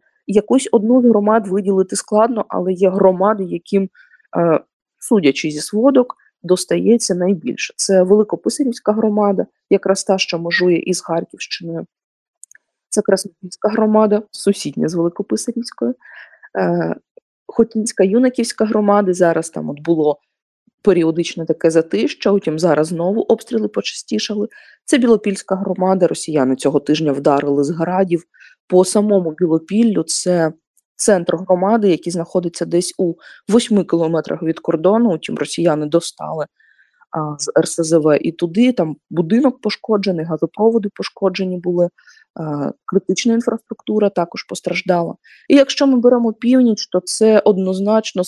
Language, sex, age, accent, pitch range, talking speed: Ukrainian, female, 20-39, native, 170-215 Hz, 115 wpm